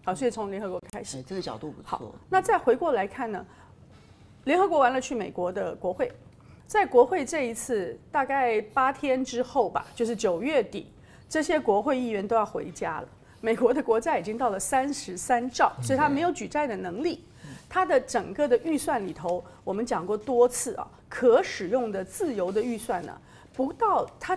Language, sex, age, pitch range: Chinese, female, 40-59, 210-325 Hz